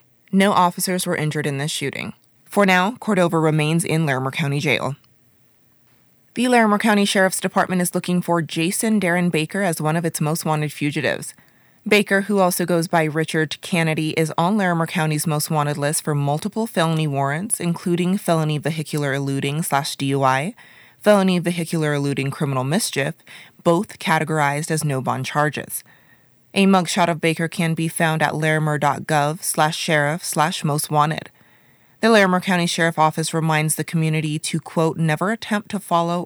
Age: 20-39